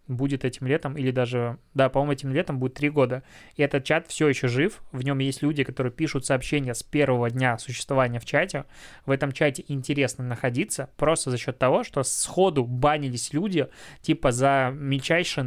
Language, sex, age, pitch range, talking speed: Russian, male, 20-39, 130-155 Hz, 180 wpm